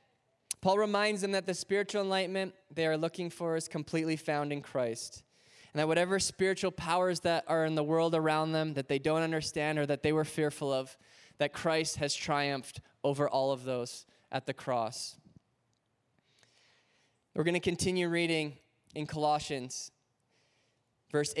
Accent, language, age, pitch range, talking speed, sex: American, English, 20-39, 160-195 Hz, 160 wpm, male